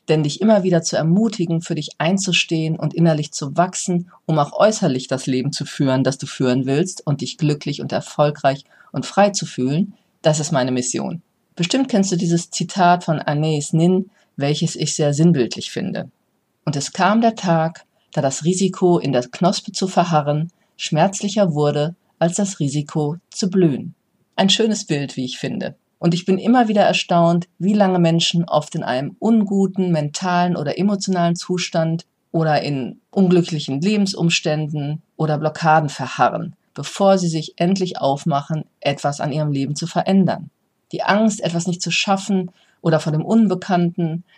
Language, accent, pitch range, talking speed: German, German, 150-185 Hz, 165 wpm